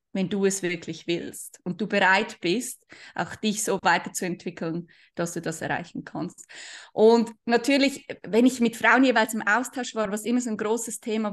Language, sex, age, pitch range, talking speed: German, female, 20-39, 195-240 Hz, 180 wpm